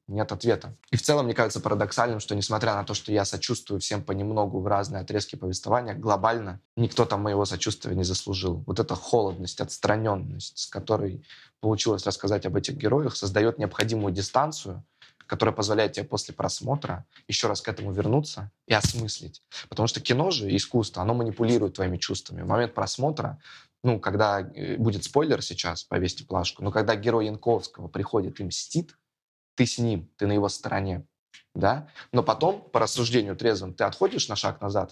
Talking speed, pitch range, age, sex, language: 170 wpm, 100-120 Hz, 20-39, male, Russian